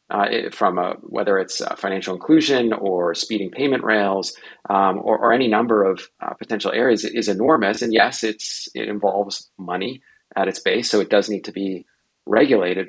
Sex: male